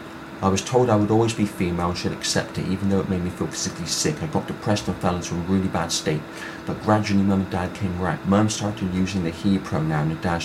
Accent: British